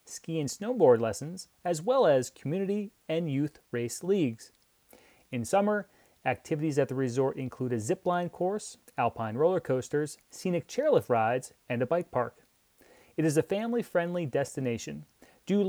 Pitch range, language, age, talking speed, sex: 130-195 Hz, English, 30-49, 145 wpm, male